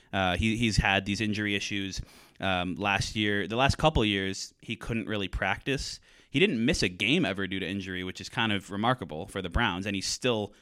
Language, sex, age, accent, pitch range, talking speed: English, male, 20-39, American, 100-130 Hz, 220 wpm